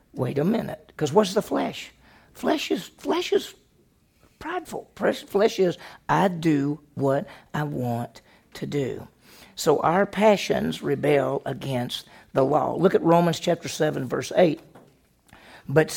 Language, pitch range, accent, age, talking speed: English, 165-230 Hz, American, 50-69, 135 wpm